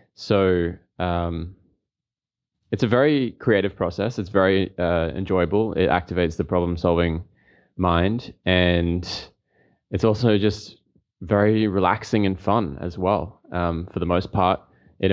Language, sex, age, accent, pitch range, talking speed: English, male, 20-39, Australian, 85-100 Hz, 130 wpm